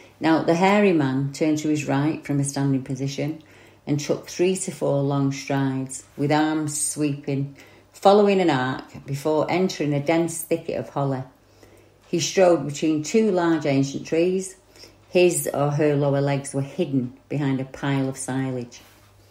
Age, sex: 40-59, female